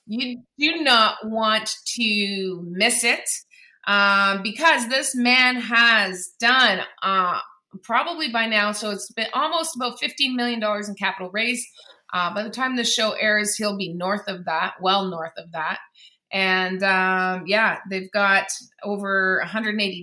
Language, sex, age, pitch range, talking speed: English, female, 30-49, 190-235 Hz, 150 wpm